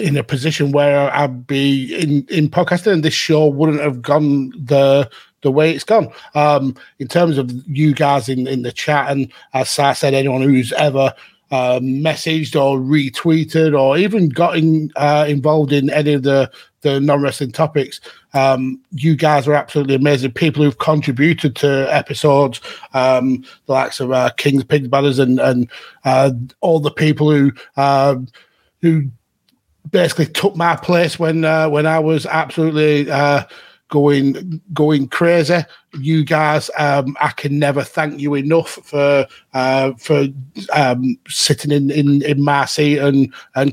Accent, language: British, English